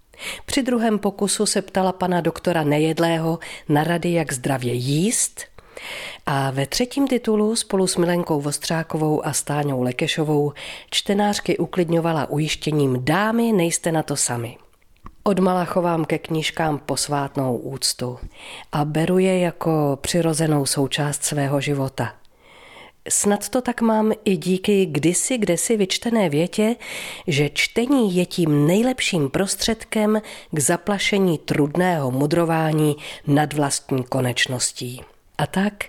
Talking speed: 120 wpm